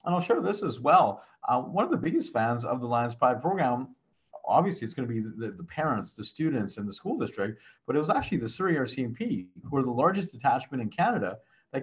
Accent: American